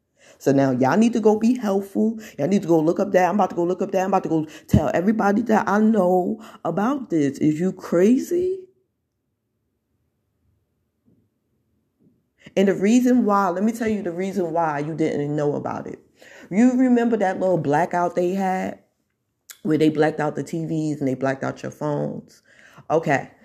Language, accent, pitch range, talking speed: English, American, 140-200 Hz, 185 wpm